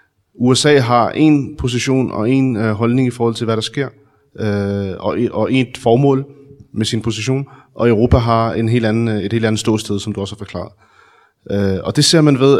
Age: 30-49